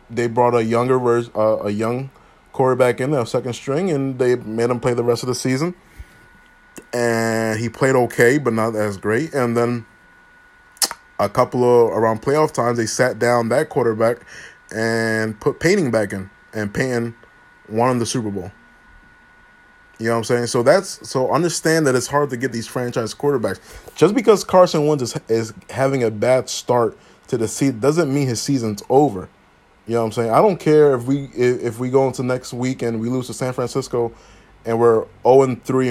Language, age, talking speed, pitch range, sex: English, 20-39, 190 wpm, 110-130 Hz, male